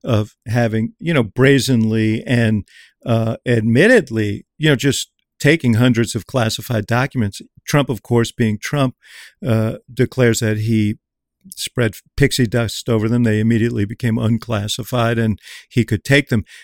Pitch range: 115-145 Hz